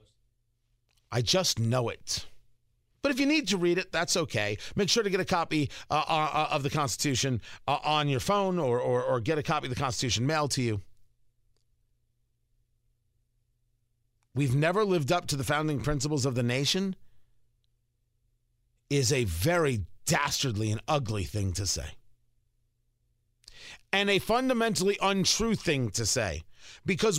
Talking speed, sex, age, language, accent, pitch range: 150 wpm, male, 40-59, English, American, 115-195 Hz